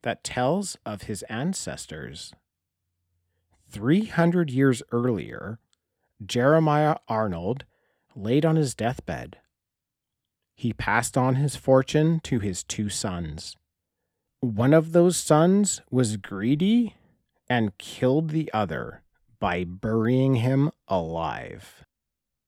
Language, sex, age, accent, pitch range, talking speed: English, male, 40-59, American, 100-140 Hz, 100 wpm